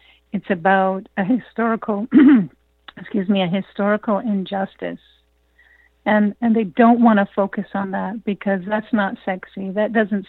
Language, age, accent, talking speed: English, 50-69, American, 140 wpm